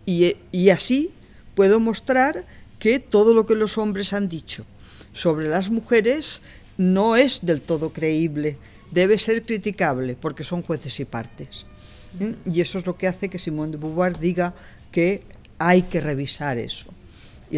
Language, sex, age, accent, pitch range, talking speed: Spanish, female, 50-69, Spanish, 130-185 Hz, 155 wpm